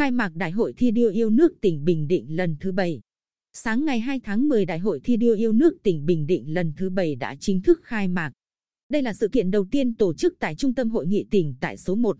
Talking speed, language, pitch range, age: 260 wpm, Vietnamese, 185-235 Hz, 20-39